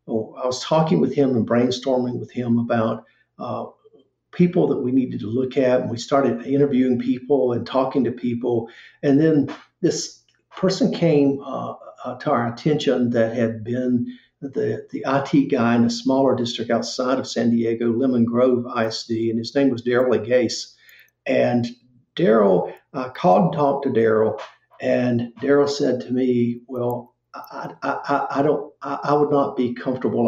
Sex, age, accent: male, 50-69, American